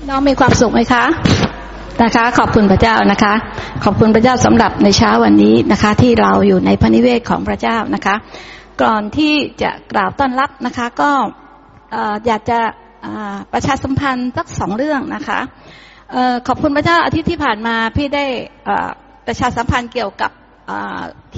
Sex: female